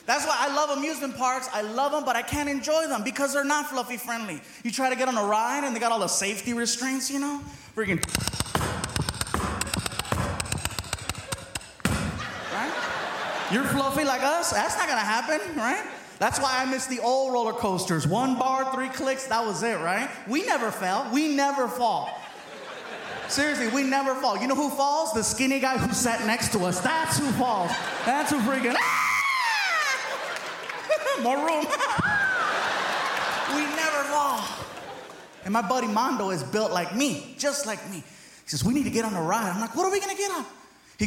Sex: male